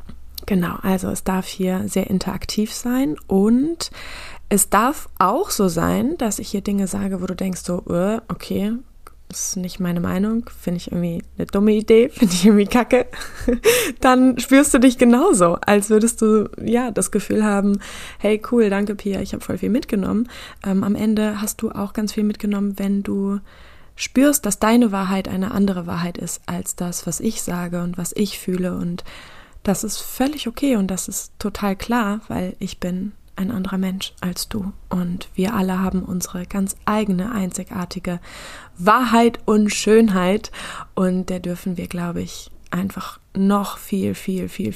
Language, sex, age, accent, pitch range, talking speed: German, female, 20-39, German, 185-220 Hz, 170 wpm